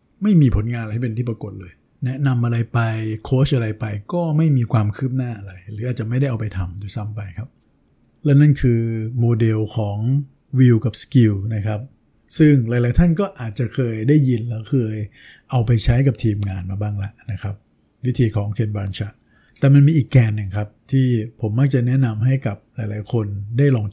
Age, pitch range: 60-79, 110-135 Hz